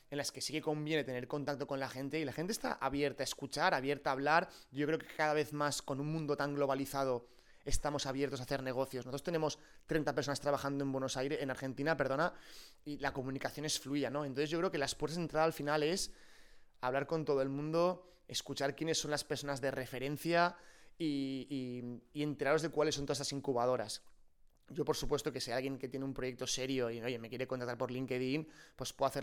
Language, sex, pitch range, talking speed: Spanish, male, 135-155 Hz, 220 wpm